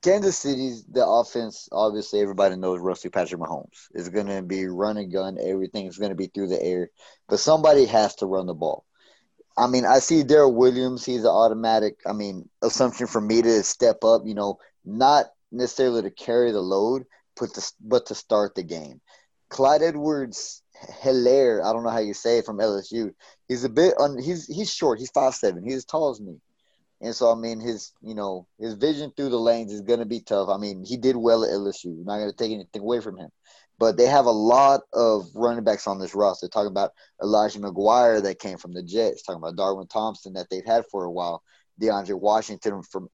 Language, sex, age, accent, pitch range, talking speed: English, male, 20-39, American, 100-125 Hz, 220 wpm